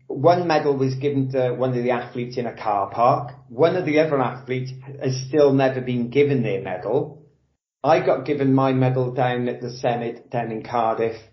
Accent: British